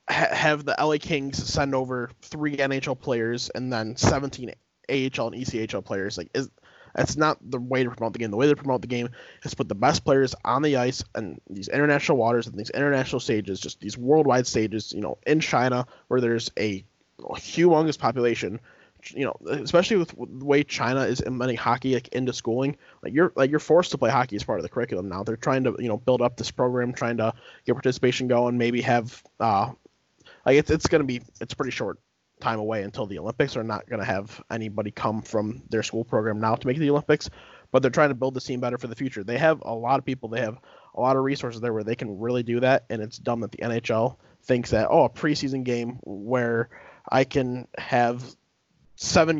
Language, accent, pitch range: English, American, 115-135 Hz